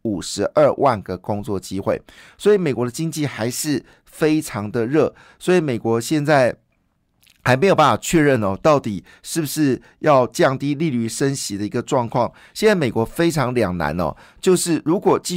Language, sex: Chinese, male